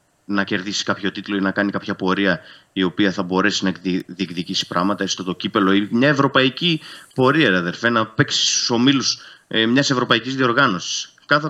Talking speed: 165 wpm